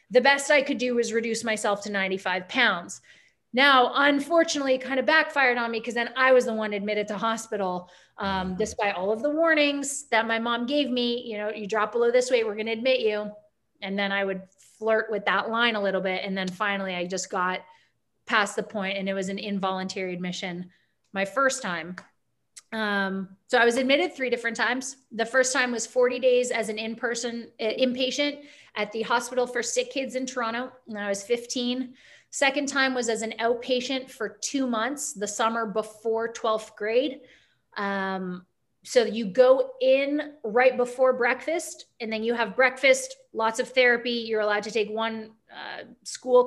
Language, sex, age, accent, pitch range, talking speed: English, female, 30-49, American, 205-255 Hz, 190 wpm